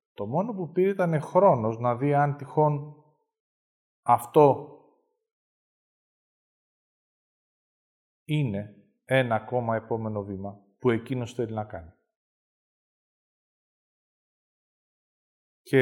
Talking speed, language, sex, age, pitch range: 85 wpm, Greek, male, 40-59, 110-170 Hz